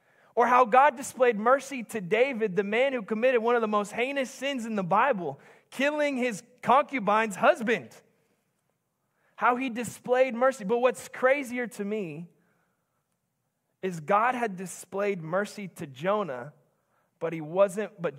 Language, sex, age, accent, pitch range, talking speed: English, male, 20-39, American, 200-265 Hz, 140 wpm